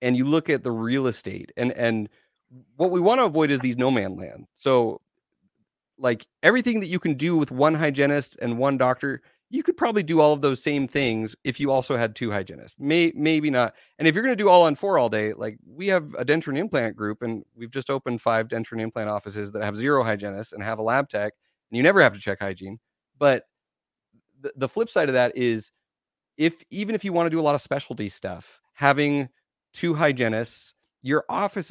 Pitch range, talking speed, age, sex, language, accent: 115-155 Hz, 225 wpm, 30-49, male, English, American